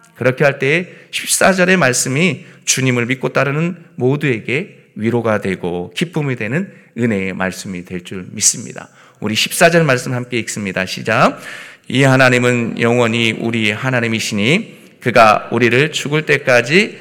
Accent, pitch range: native, 100-155 Hz